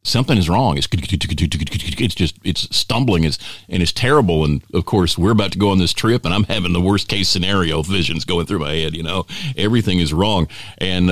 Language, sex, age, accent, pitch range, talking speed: English, male, 50-69, American, 80-100 Hz, 215 wpm